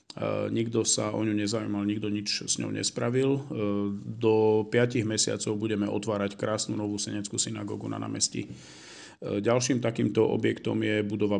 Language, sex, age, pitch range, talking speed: Slovak, male, 40-59, 105-115 Hz, 135 wpm